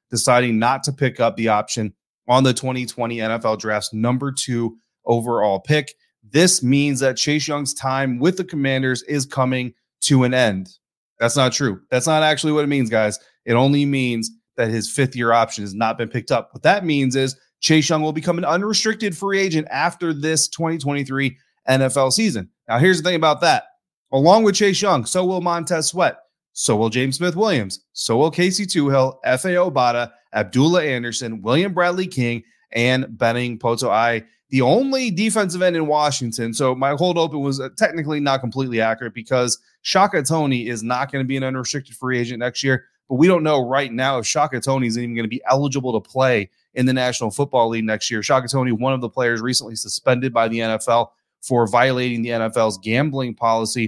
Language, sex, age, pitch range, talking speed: English, male, 30-49, 115-150 Hz, 195 wpm